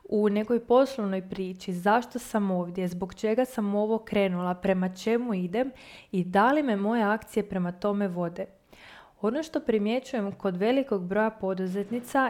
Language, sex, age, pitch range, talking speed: Croatian, female, 20-39, 195-240 Hz, 150 wpm